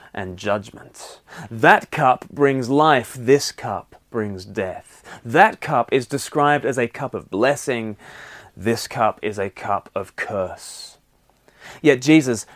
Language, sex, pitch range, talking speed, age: English, male, 115-145 Hz, 135 wpm, 30-49